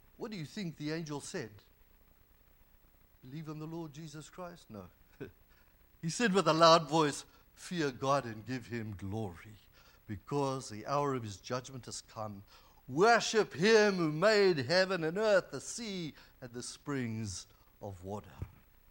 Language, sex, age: English, male, 60-79